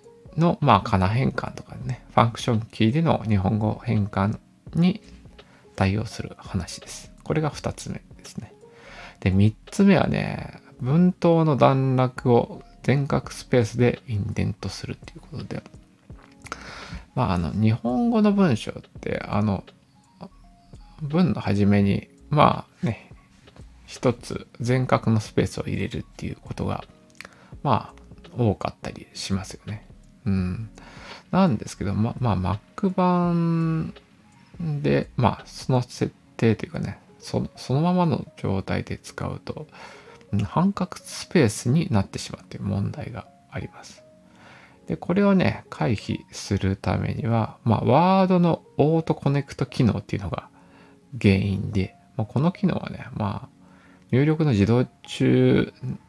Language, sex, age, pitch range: Japanese, male, 20-39, 100-155 Hz